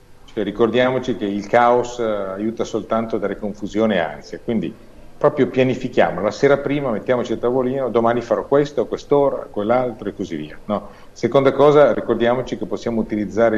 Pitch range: 100-125 Hz